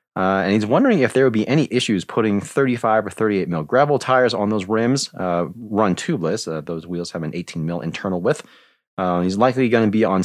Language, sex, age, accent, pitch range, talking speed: English, male, 30-49, American, 90-120 Hz, 230 wpm